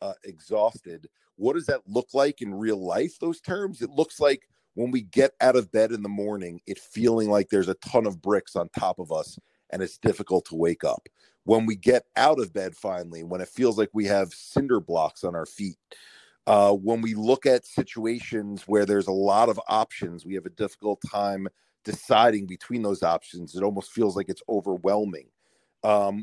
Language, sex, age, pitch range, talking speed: English, male, 40-59, 100-115 Hz, 200 wpm